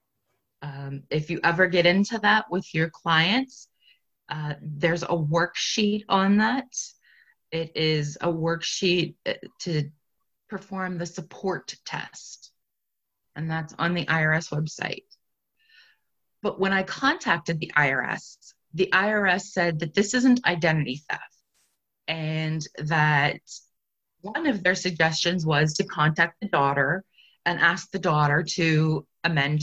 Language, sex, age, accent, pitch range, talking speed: English, female, 30-49, American, 160-200 Hz, 125 wpm